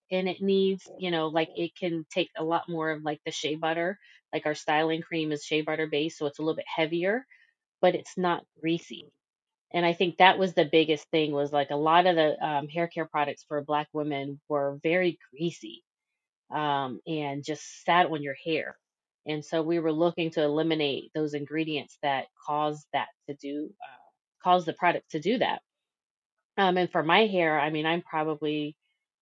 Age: 30-49